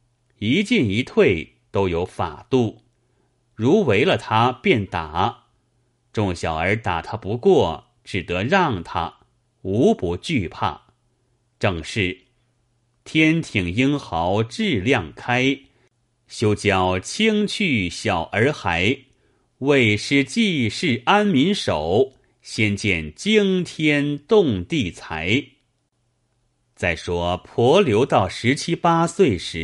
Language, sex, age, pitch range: Chinese, male, 30-49, 100-135 Hz